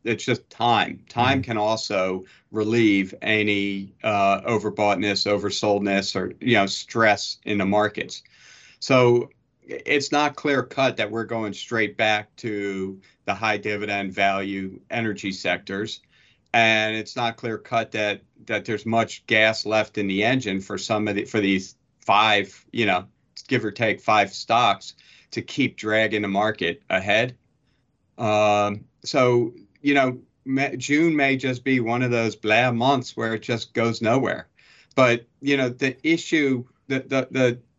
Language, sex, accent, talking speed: English, male, American, 150 wpm